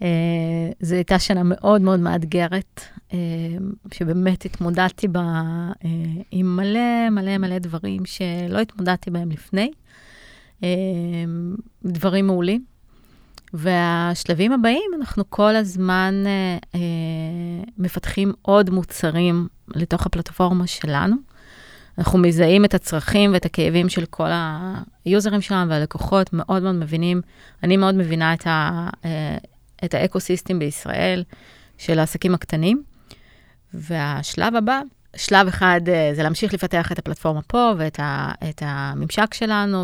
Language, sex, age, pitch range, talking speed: Hebrew, female, 30-49, 165-195 Hz, 115 wpm